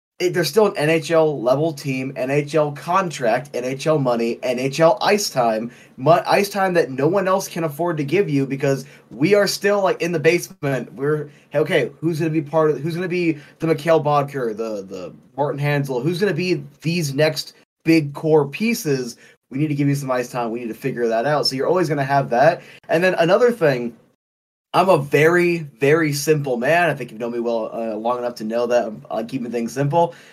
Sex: male